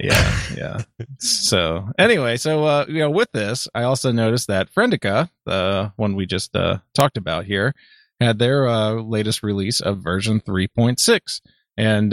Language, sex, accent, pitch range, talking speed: English, male, American, 105-135 Hz, 160 wpm